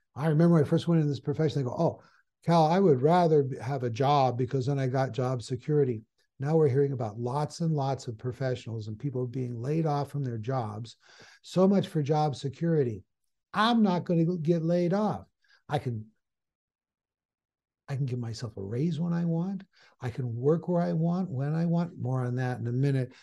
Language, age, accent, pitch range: English, 60-79, American, 130-165 Hz